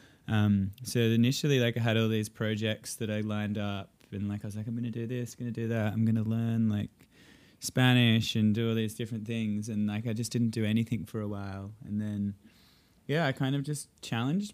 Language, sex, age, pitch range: English, male, 20-39, 105-125 Hz